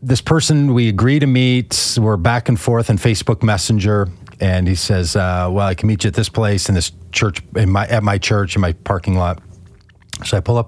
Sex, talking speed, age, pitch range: male, 230 wpm, 40-59, 95-120 Hz